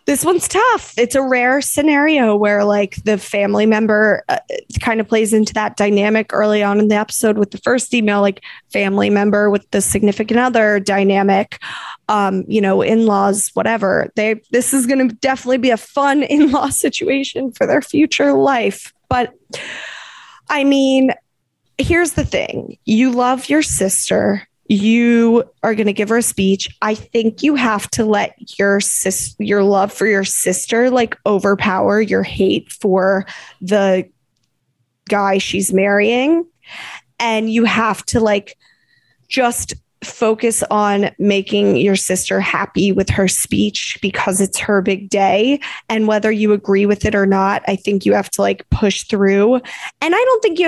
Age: 20-39